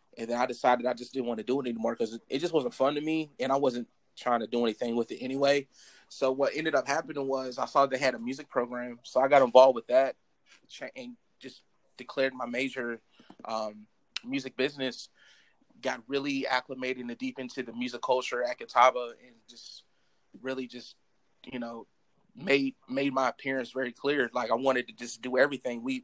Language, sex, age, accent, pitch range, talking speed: English, male, 20-39, American, 125-140 Hz, 205 wpm